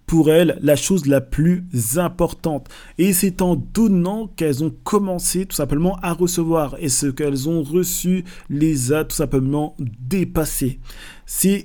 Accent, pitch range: French, 140-180 Hz